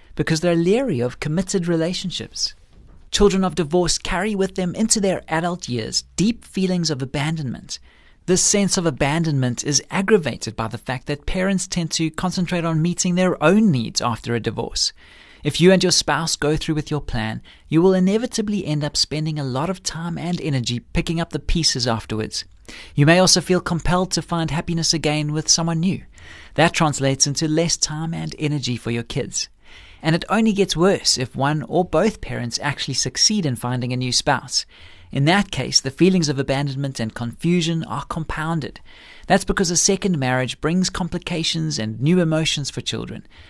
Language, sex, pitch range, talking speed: English, male, 135-180 Hz, 180 wpm